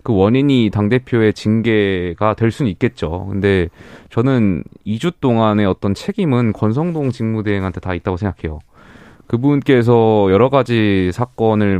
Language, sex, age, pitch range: Korean, male, 20-39, 95-130 Hz